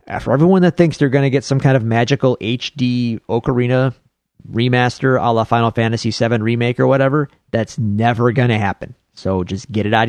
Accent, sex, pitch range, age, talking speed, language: American, male, 105-130 Hz, 30-49, 195 wpm, English